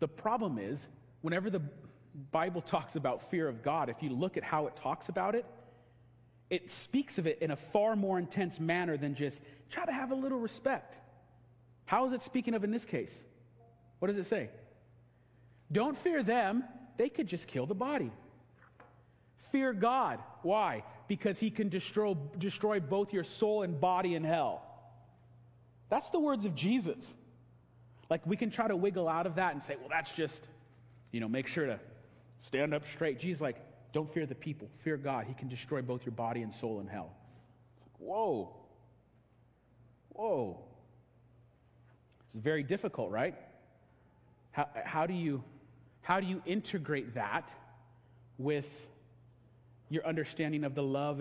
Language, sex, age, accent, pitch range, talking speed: English, male, 40-59, American, 120-190 Hz, 165 wpm